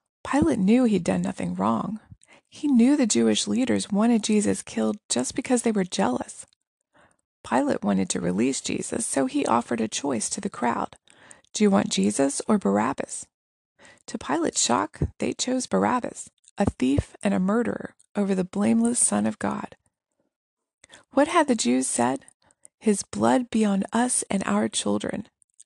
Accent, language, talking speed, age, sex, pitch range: American, English, 160 wpm, 20-39, female, 170-250 Hz